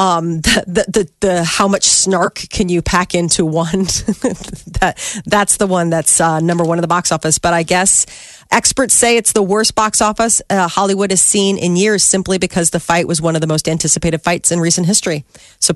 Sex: female